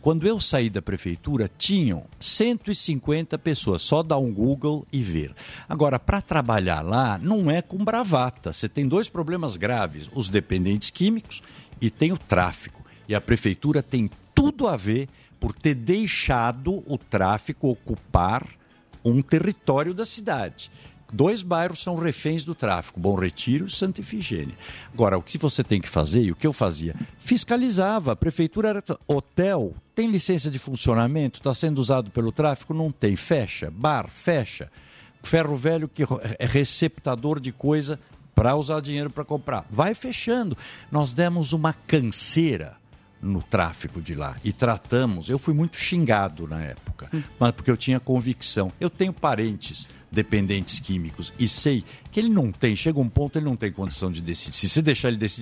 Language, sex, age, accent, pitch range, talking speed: Portuguese, male, 60-79, Brazilian, 105-155 Hz, 165 wpm